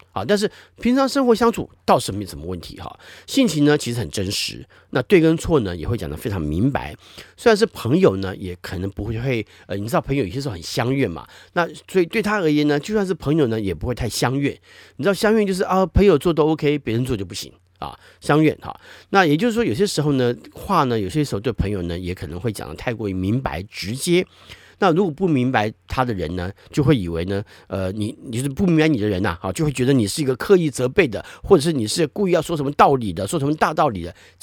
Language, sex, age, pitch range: Chinese, male, 50-69, 100-155 Hz